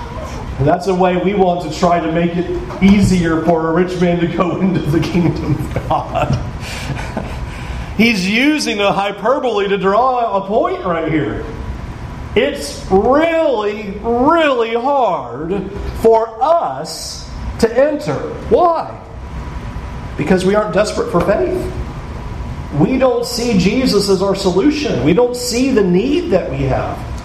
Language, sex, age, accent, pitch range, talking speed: English, male, 40-59, American, 170-235 Hz, 135 wpm